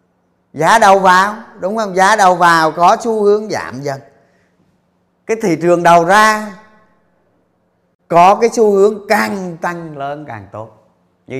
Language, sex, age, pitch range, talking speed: Vietnamese, male, 30-49, 115-165 Hz, 145 wpm